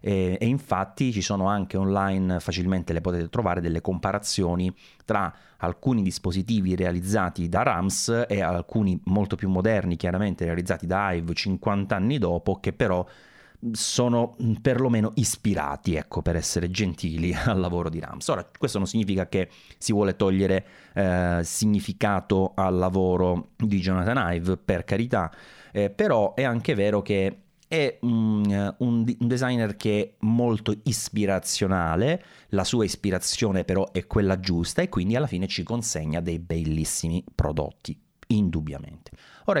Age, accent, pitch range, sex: 30-49, native, 90-110 Hz, male